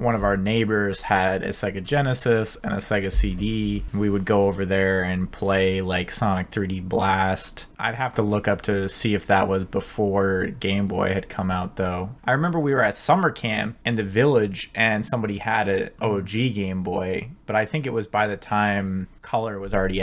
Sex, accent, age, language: male, American, 20-39, English